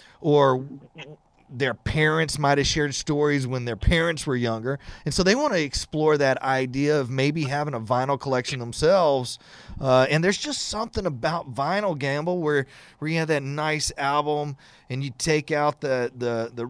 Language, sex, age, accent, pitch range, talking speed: English, male, 30-49, American, 125-155 Hz, 170 wpm